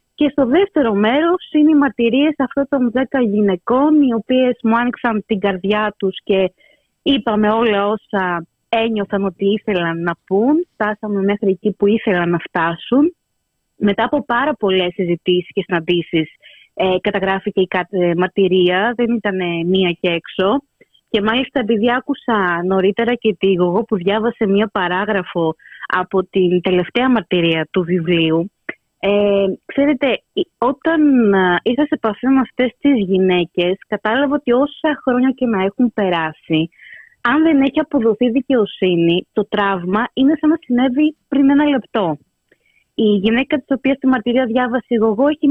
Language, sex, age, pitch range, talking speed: Greek, female, 20-39, 190-275 Hz, 145 wpm